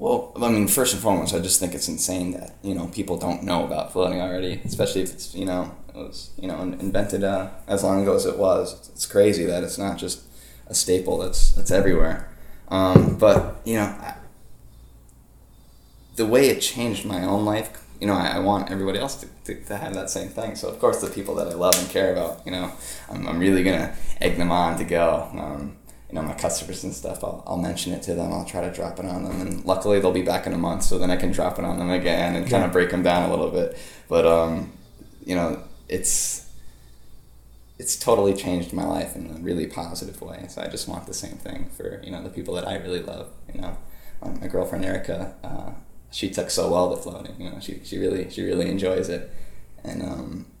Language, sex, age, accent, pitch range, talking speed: English, male, 10-29, American, 85-95 Hz, 230 wpm